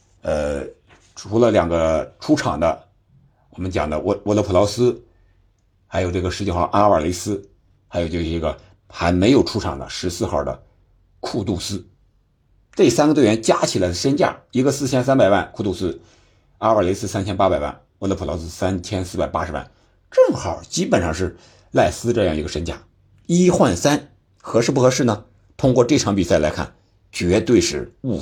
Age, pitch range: 60-79, 90-110 Hz